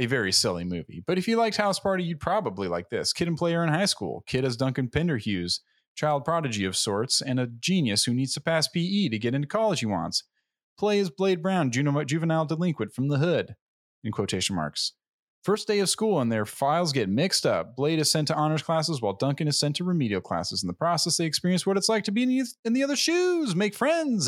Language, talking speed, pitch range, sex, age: English, 230 wpm, 120-200 Hz, male, 30-49